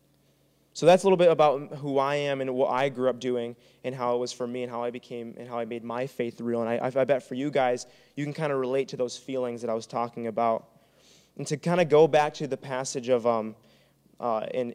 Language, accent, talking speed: English, American, 270 wpm